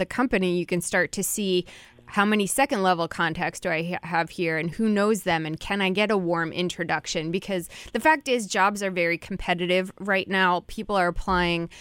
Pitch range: 170-190 Hz